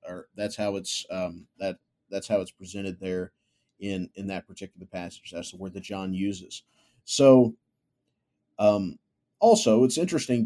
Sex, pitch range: male, 100-125 Hz